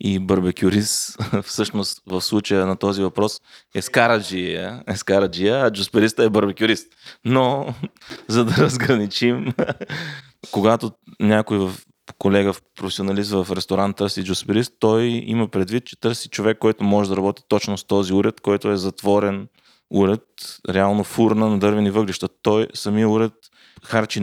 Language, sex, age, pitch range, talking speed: Bulgarian, male, 20-39, 95-110 Hz, 140 wpm